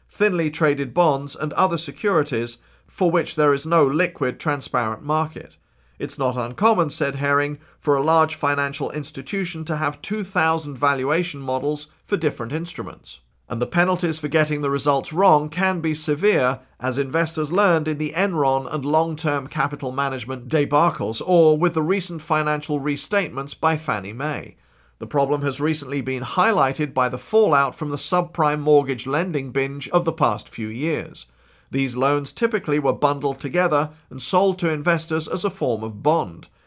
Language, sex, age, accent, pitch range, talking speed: English, male, 50-69, British, 130-165 Hz, 160 wpm